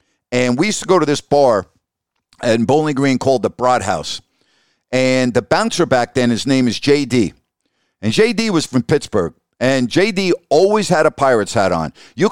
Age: 50-69